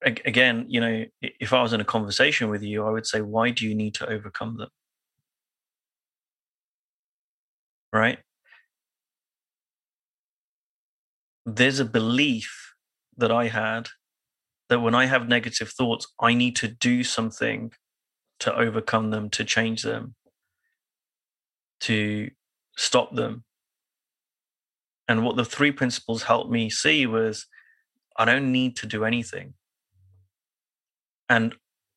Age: 30-49